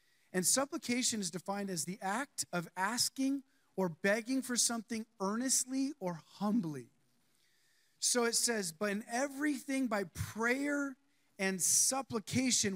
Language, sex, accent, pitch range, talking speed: English, male, American, 185-240 Hz, 120 wpm